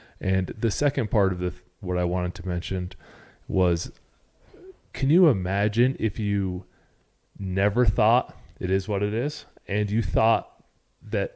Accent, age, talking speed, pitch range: American, 30-49, 145 wpm, 95-120 Hz